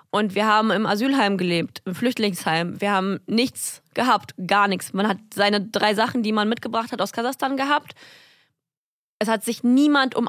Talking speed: 180 wpm